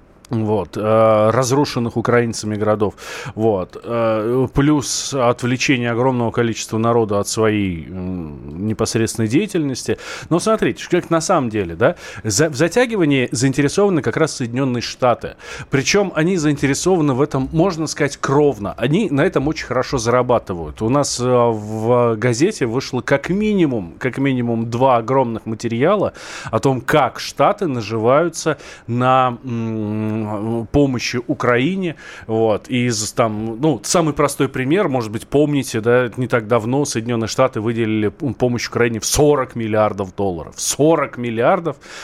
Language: Russian